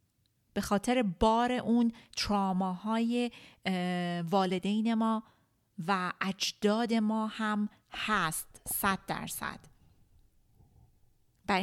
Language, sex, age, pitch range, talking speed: Persian, female, 30-49, 175-215 Hz, 75 wpm